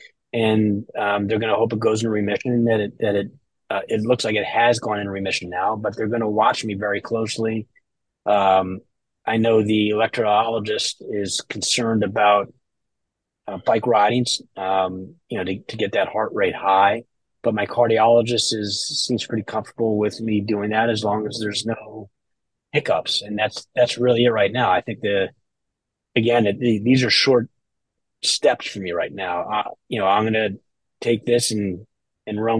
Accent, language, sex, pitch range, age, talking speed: American, English, male, 100-120 Hz, 30-49, 185 wpm